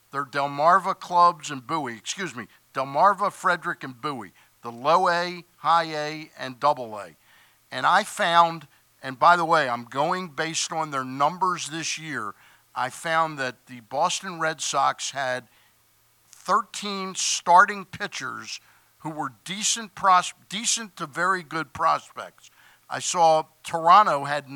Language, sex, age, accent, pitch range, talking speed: English, male, 50-69, American, 140-190 Hz, 140 wpm